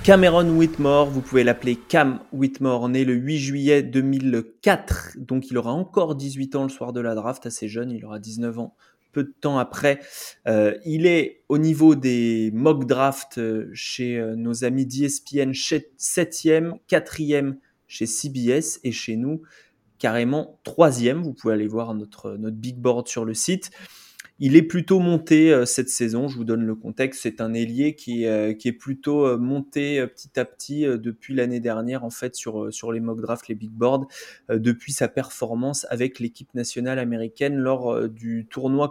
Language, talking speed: French, 170 wpm